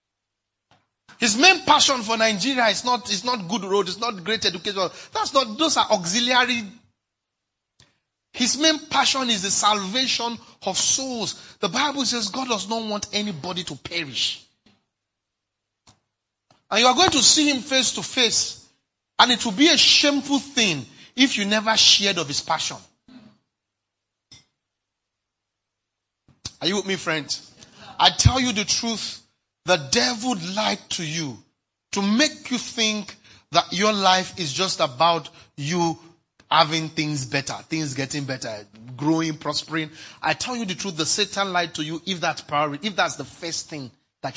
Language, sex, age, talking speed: English, male, 40-59, 155 wpm